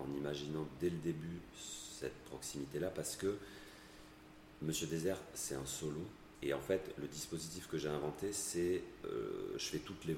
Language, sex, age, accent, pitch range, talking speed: French, male, 30-49, French, 65-80 Hz, 165 wpm